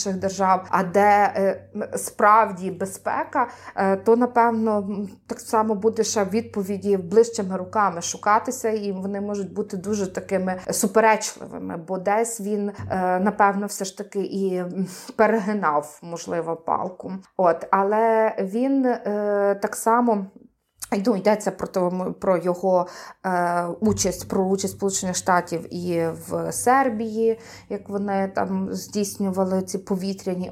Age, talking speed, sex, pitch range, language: 20-39, 110 wpm, female, 185-215 Hz, Ukrainian